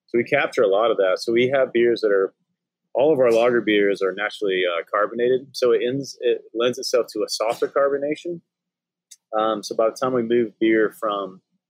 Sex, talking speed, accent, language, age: male, 205 wpm, American, English, 30-49